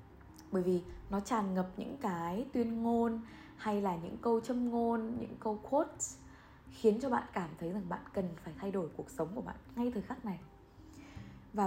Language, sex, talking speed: Vietnamese, female, 195 wpm